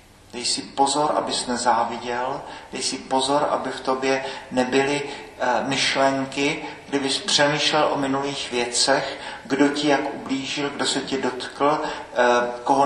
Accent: native